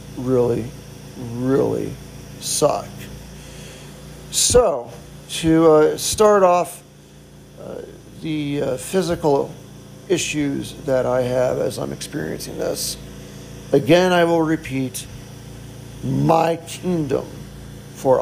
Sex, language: male, English